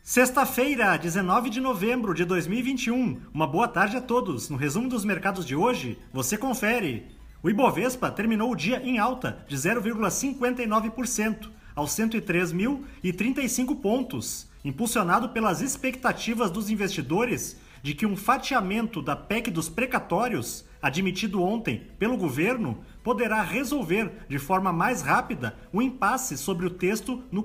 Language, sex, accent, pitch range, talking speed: Portuguese, male, Brazilian, 190-245 Hz, 130 wpm